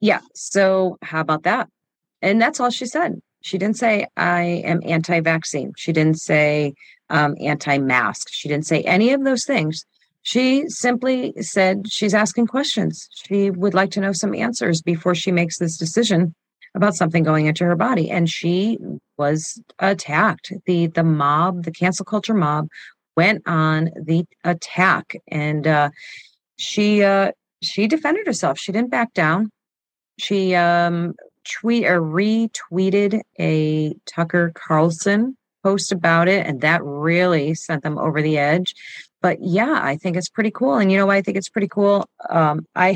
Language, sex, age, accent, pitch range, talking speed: English, female, 40-59, American, 160-200 Hz, 160 wpm